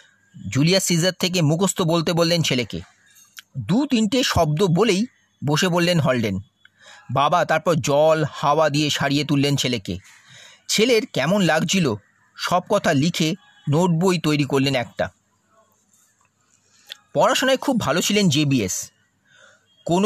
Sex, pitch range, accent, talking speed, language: male, 145-200 Hz, native, 115 wpm, Bengali